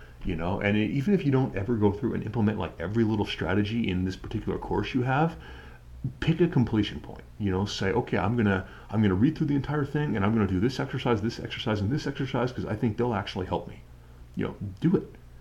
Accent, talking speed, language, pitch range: American, 250 wpm, English, 90-115 Hz